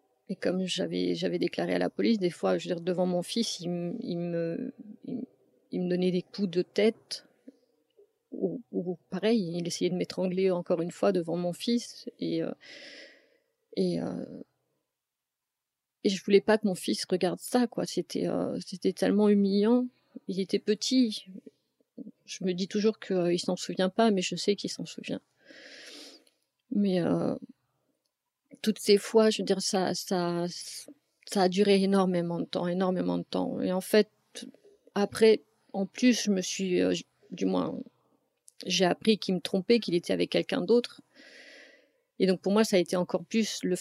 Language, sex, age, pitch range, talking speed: French, female, 40-59, 185-230 Hz, 170 wpm